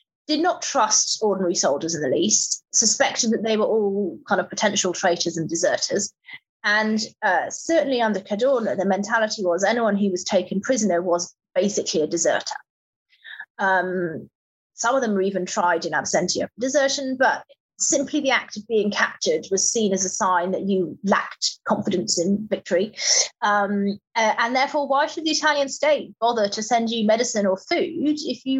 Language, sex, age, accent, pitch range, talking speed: English, female, 30-49, British, 190-265 Hz, 170 wpm